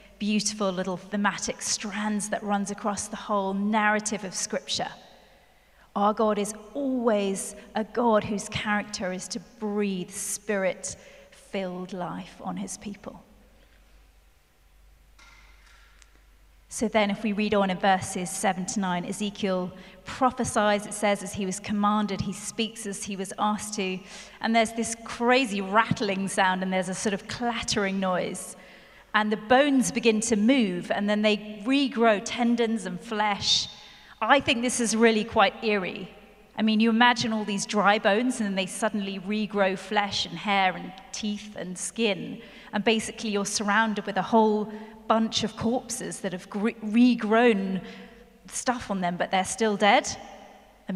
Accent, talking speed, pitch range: British, 150 wpm, 195-220 Hz